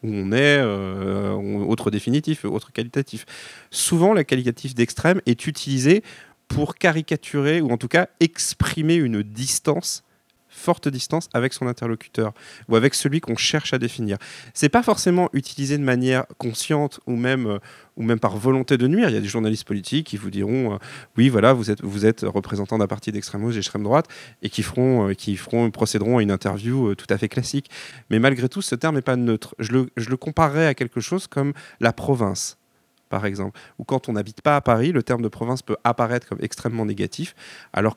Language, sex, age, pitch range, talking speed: French, male, 30-49, 110-145 Hz, 205 wpm